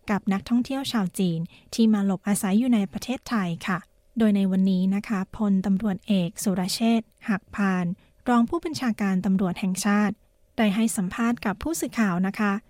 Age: 20-39